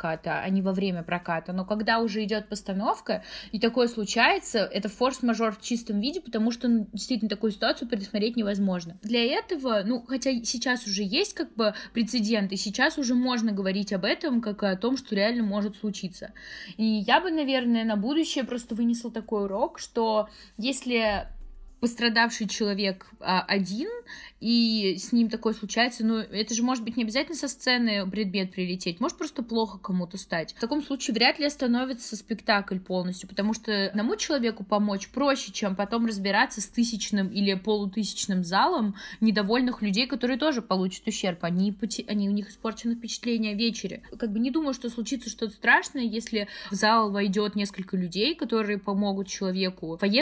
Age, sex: 20-39, female